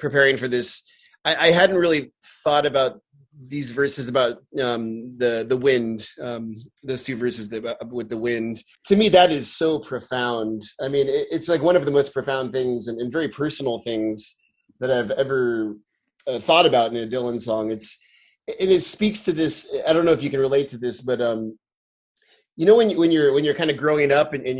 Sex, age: male, 30-49